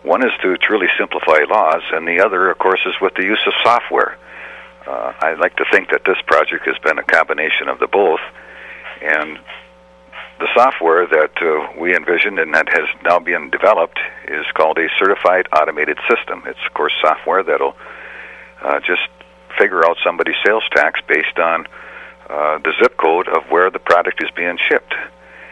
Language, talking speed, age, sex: English, 180 wpm, 60-79, male